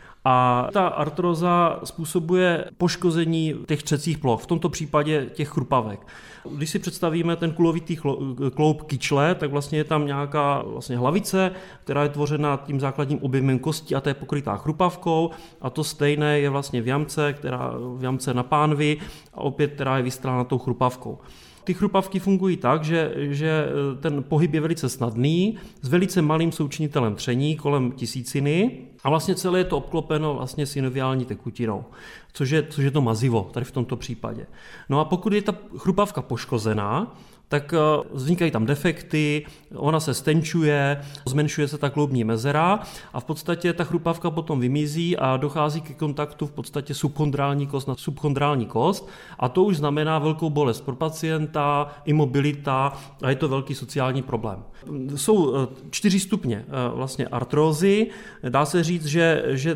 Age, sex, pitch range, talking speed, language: 30-49, male, 135-165 Hz, 155 wpm, Czech